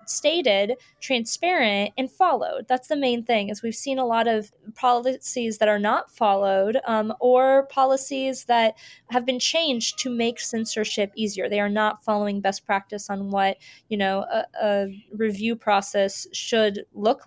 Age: 20-39